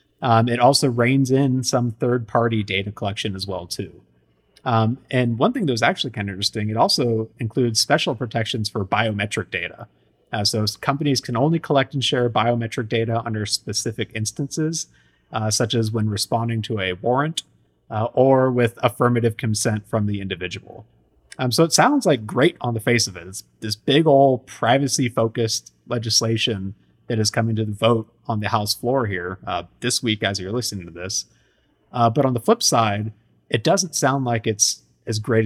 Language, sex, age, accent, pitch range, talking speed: English, male, 30-49, American, 105-130 Hz, 185 wpm